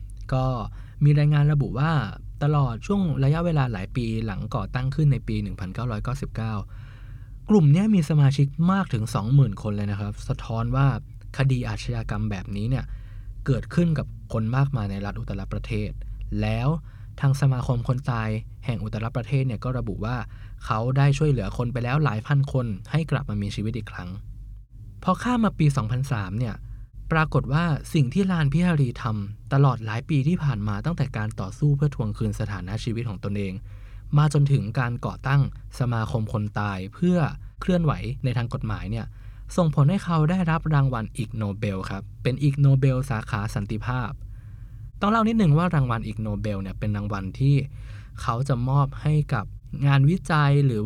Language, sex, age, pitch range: Thai, male, 20-39, 105-140 Hz